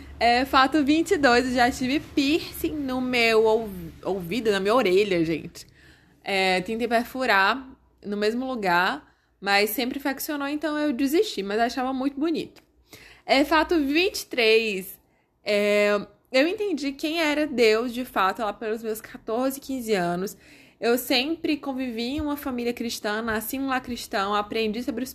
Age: 20-39